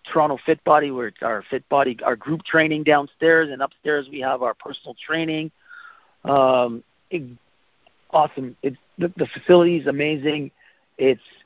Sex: male